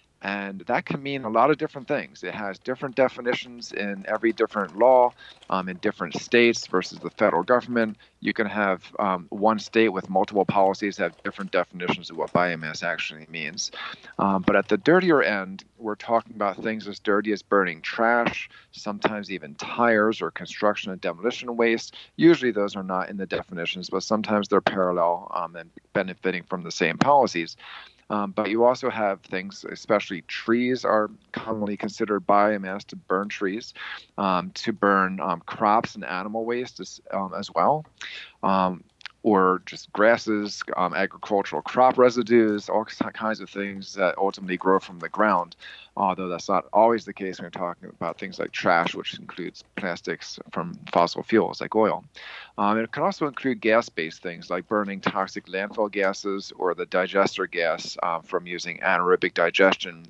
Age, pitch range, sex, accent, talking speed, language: 40-59, 95-115 Hz, male, American, 170 wpm, English